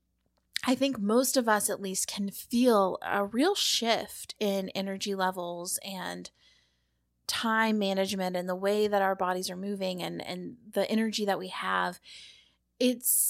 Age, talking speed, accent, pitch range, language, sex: 20-39, 155 wpm, American, 190-235 Hz, English, female